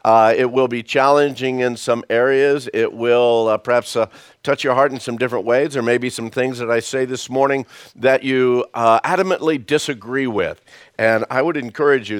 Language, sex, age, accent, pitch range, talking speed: English, male, 50-69, American, 110-135 Hz, 195 wpm